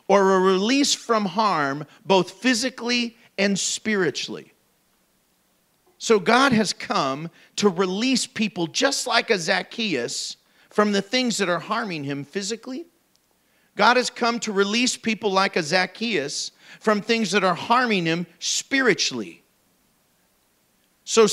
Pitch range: 195-245 Hz